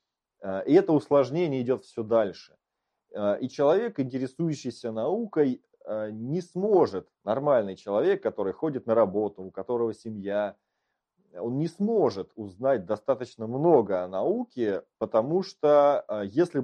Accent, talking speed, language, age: native, 115 wpm, Russian, 30-49